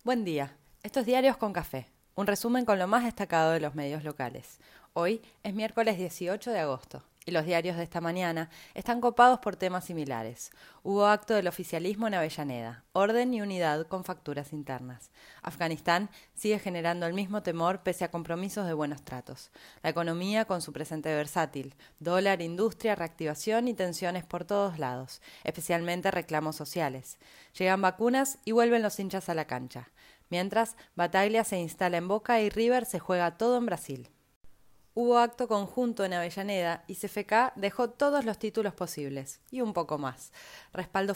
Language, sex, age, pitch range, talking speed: Spanish, female, 20-39, 160-210 Hz, 165 wpm